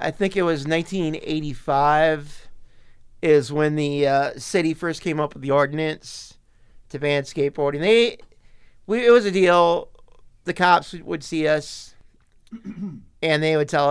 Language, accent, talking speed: English, American, 145 wpm